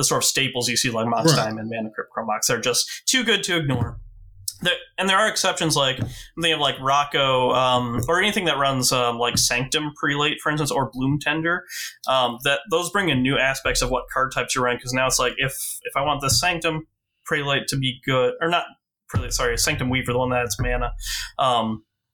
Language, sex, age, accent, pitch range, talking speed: English, male, 20-39, American, 120-145 Hz, 210 wpm